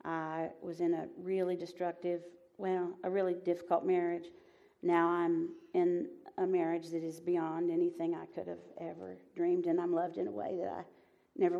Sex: female